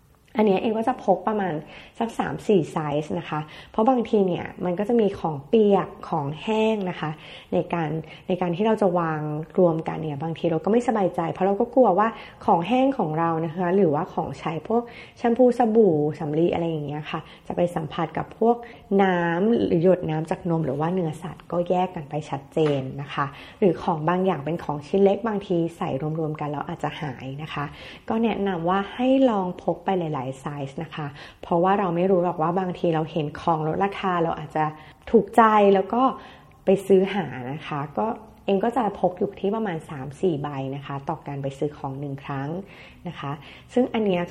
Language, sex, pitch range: Thai, female, 155-200 Hz